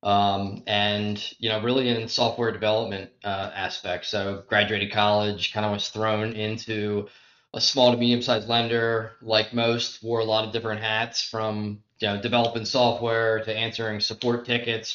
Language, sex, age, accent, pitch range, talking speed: English, male, 20-39, American, 105-120 Hz, 160 wpm